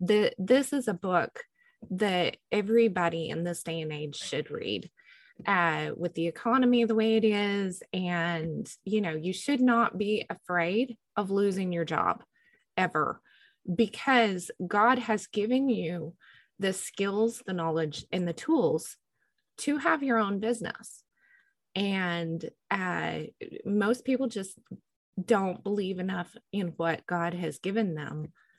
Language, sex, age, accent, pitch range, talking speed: English, female, 20-39, American, 175-230 Hz, 135 wpm